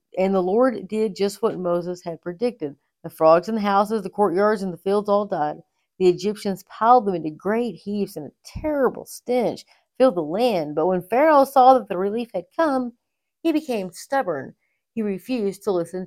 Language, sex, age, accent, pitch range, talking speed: English, female, 40-59, American, 175-235 Hz, 190 wpm